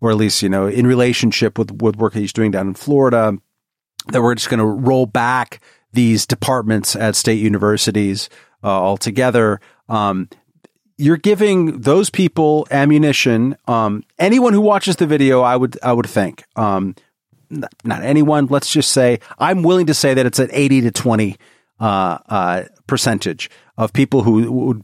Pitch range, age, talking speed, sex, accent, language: 105-140 Hz, 40-59, 170 wpm, male, American, English